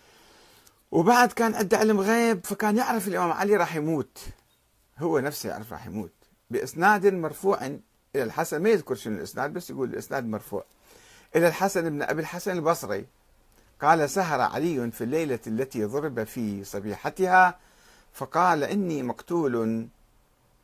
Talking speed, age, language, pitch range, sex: 130 wpm, 50-69, Arabic, 110-175 Hz, male